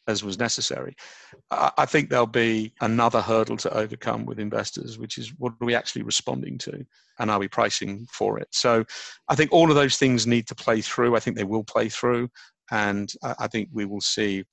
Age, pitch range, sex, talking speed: 40-59, 105-120 Hz, male, 205 wpm